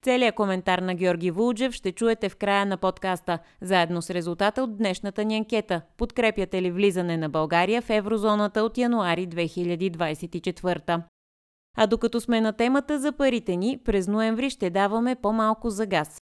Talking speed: 160 wpm